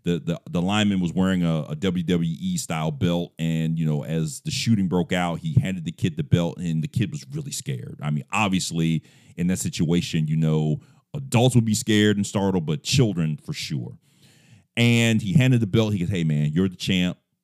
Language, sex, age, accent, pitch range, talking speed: English, male, 40-59, American, 80-130 Hz, 205 wpm